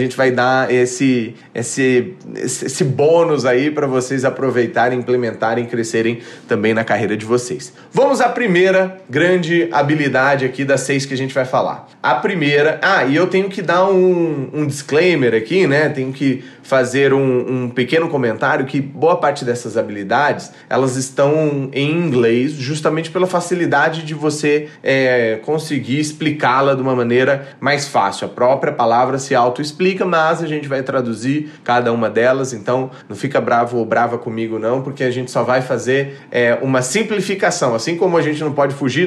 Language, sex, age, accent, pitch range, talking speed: Portuguese, male, 20-39, Brazilian, 120-145 Hz, 170 wpm